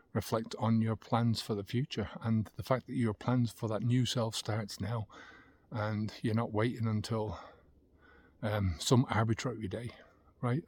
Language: English